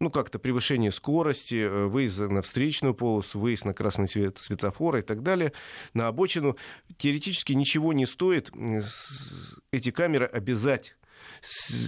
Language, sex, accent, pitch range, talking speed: Russian, male, native, 110-140 Hz, 125 wpm